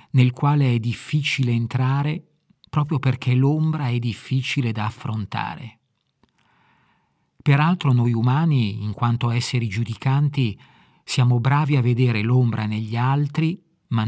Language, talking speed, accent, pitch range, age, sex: Italian, 115 wpm, native, 115-140 Hz, 40-59, male